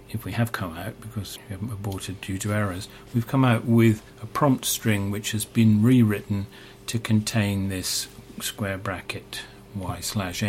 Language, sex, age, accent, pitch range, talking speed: English, male, 40-59, British, 105-125 Hz, 170 wpm